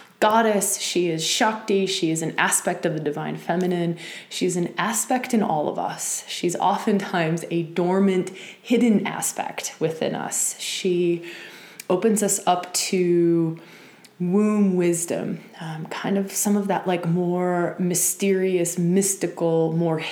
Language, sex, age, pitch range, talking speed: English, female, 20-39, 165-200 Hz, 135 wpm